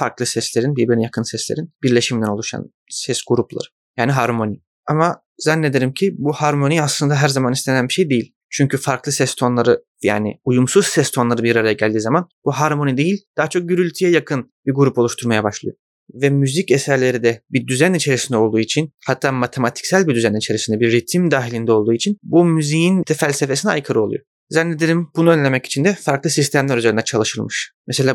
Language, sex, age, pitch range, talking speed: Turkish, male, 30-49, 120-155 Hz, 175 wpm